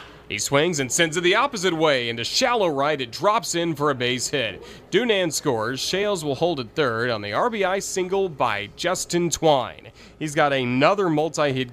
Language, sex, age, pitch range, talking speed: English, male, 30-49, 110-155 Hz, 185 wpm